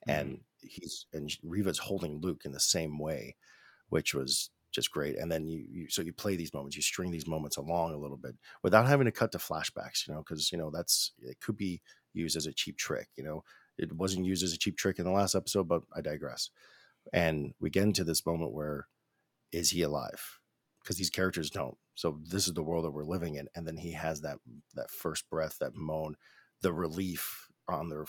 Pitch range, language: 75-95 Hz, English